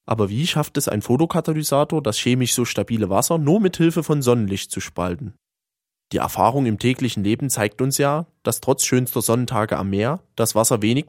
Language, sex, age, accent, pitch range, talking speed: German, male, 20-39, German, 110-145 Hz, 190 wpm